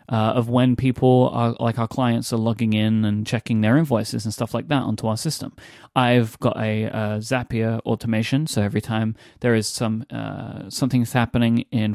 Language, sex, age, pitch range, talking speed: English, male, 30-49, 115-150 Hz, 190 wpm